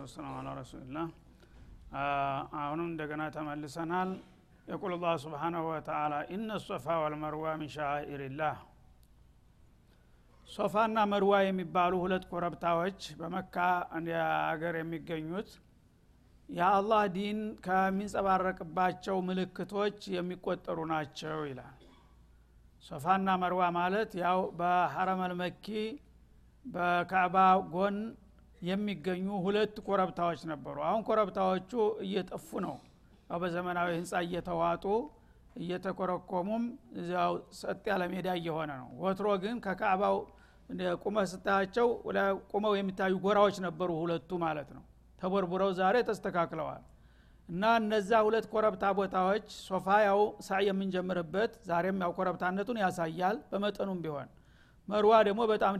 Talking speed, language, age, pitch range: 95 wpm, Amharic, 60-79, 165-200 Hz